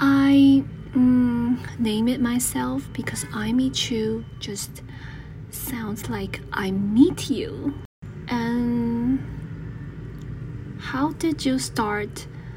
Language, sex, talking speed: English, female, 95 wpm